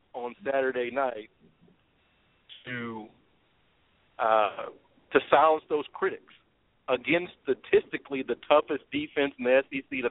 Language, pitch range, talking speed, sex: English, 125-155 Hz, 105 wpm, male